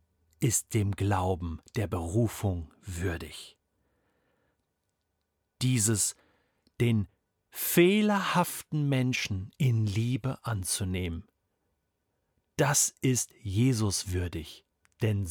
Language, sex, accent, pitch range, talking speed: German, male, German, 100-155 Hz, 70 wpm